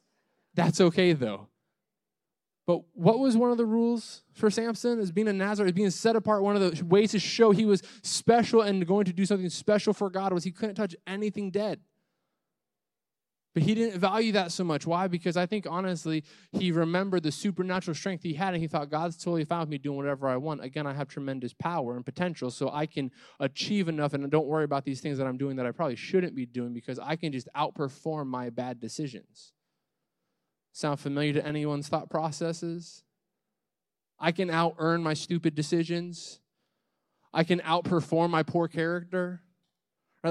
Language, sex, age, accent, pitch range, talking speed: English, male, 20-39, American, 150-190 Hz, 190 wpm